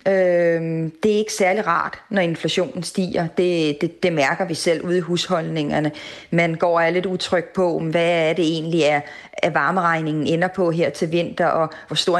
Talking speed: 180 wpm